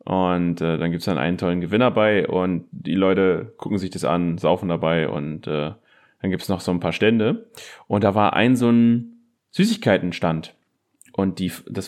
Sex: male